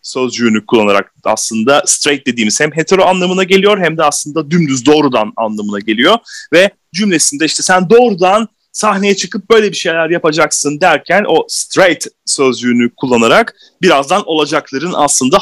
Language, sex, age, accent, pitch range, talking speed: Turkish, male, 30-49, native, 120-185 Hz, 135 wpm